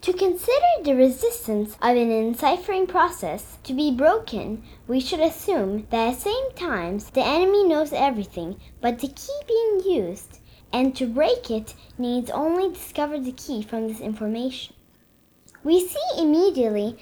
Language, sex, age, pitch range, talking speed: English, female, 10-29, 230-330 Hz, 150 wpm